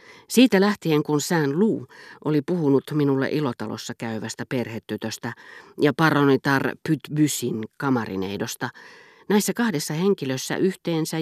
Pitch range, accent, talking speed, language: 120-160 Hz, native, 100 wpm, Finnish